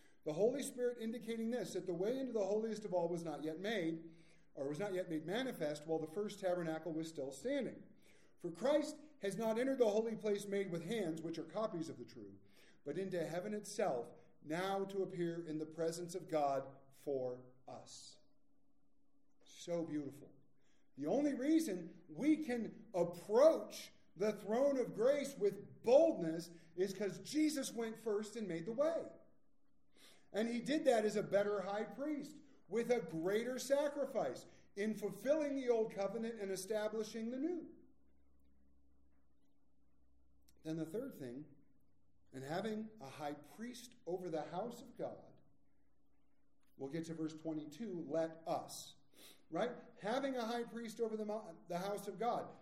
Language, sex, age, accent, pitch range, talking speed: English, male, 40-59, American, 160-235 Hz, 155 wpm